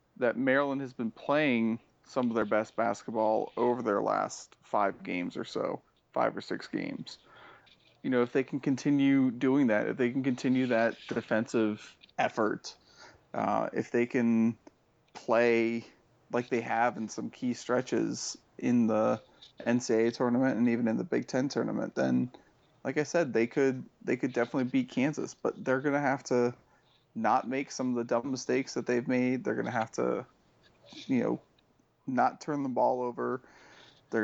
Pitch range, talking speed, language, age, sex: 115-135 Hz, 175 wpm, English, 30-49, male